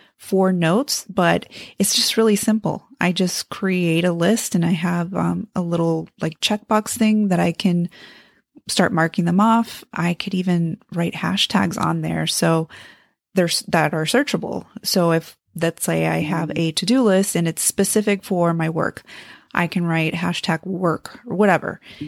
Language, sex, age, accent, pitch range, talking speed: English, female, 30-49, American, 170-215 Hz, 170 wpm